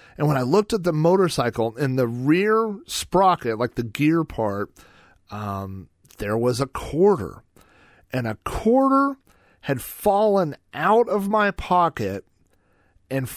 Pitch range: 110-155 Hz